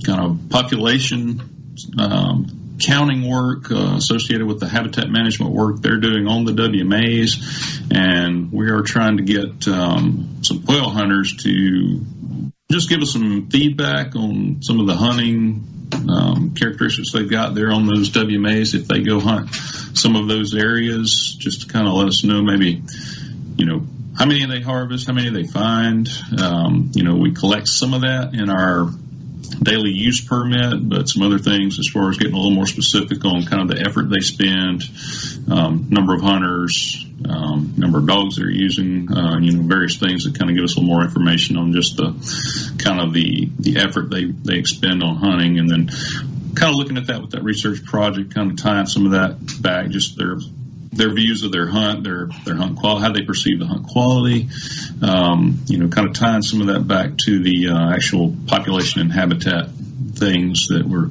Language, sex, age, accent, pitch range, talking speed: English, male, 40-59, American, 95-125 Hz, 195 wpm